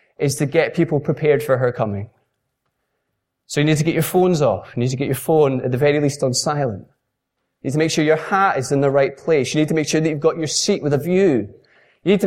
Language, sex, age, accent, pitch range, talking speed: English, male, 20-39, British, 135-180 Hz, 275 wpm